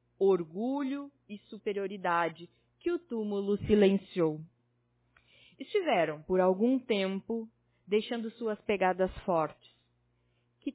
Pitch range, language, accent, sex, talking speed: 175-235 Hz, Portuguese, Brazilian, female, 90 wpm